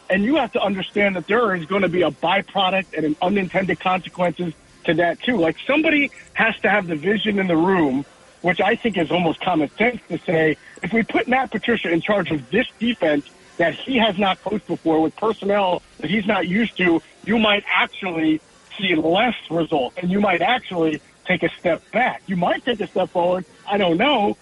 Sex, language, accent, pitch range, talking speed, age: male, English, American, 155-200 Hz, 210 wpm, 50-69